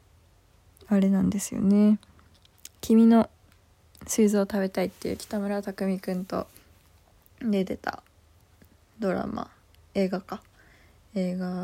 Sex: female